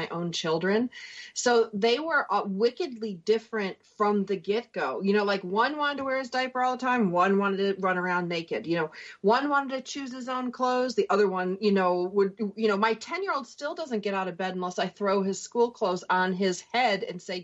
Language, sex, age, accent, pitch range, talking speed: English, female, 40-59, American, 195-250 Hz, 225 wpm